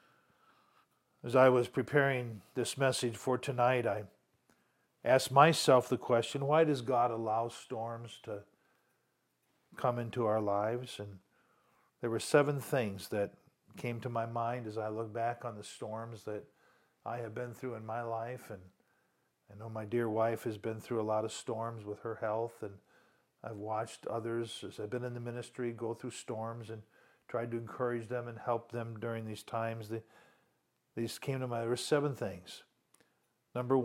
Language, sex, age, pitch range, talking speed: English, male, 50-69, 115-135 Hz, 170 wpm